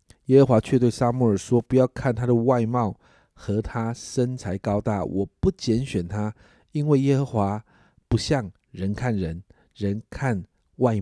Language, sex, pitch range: Chinese, male, 100-130 Hz